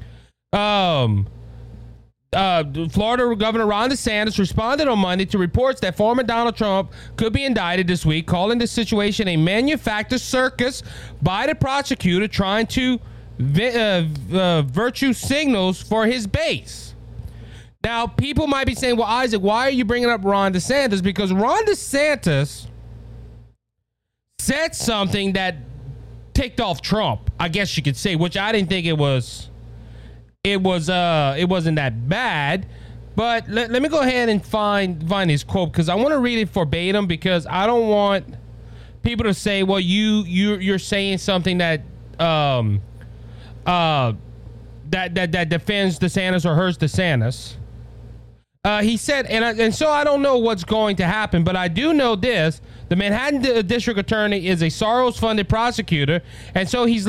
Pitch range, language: 140-225 Hz, English